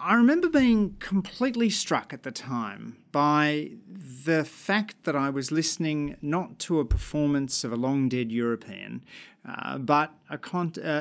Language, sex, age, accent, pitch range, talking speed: English, male, 40-59, Australian, 130-170 Hz, 145 wpm